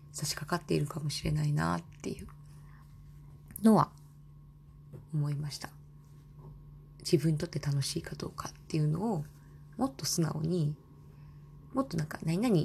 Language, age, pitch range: Japanese, 20-39, 145-170 Hz